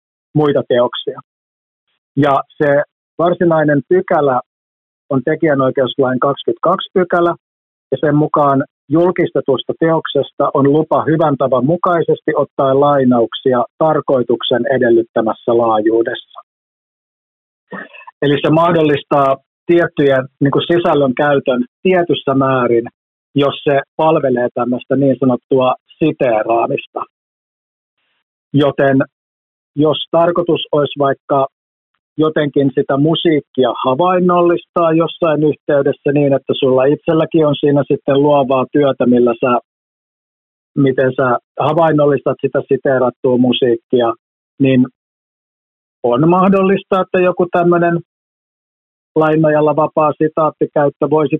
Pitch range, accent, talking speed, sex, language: 130-155 Hz, native, 95 wpm, male, Finnish